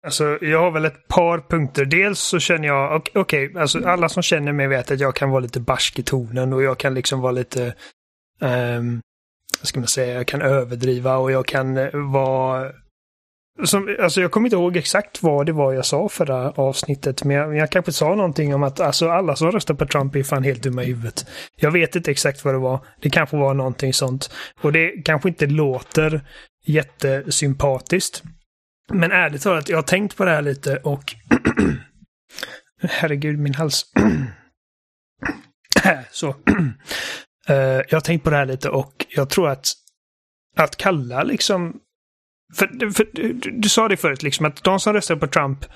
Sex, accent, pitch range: male, native, 135-165 Hz